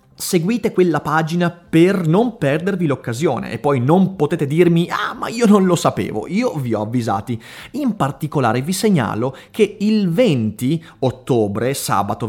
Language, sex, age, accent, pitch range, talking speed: Italian, male, 30-49, native, 125-185 Hz, 150 wpm